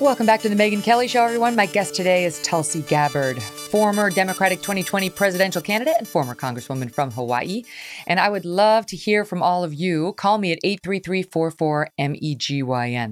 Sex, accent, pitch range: female, American, 140-195 Hz